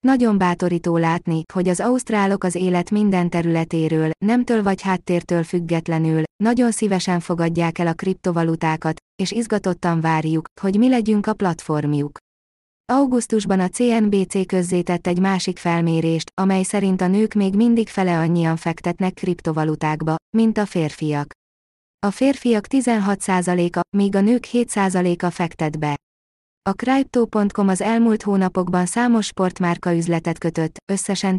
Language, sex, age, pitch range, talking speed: Hungarian, female, 20-39, 165-205 Hz, 130 wpm